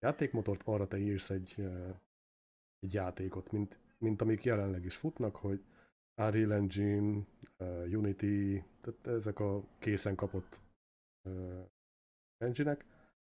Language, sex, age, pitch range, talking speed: Hungarian, male, 30-49, 95-110 Hz, 105 wpm